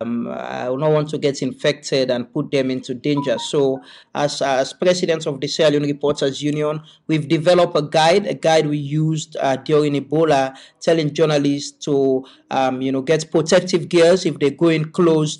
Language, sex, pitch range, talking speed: English, male, 140-170 Hz, 180 wpm